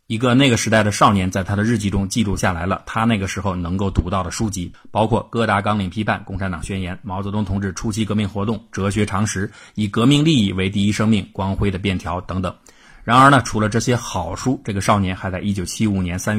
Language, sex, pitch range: Chinese, male, 95-110 Hz